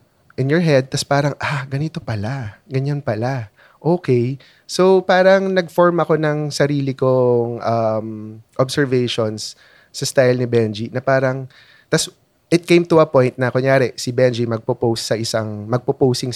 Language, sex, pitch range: Filipino, male, 120-155 Hz